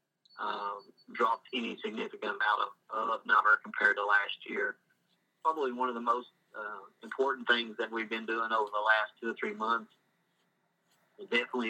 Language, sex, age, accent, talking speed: English, male, 40-59, American, 170 wpm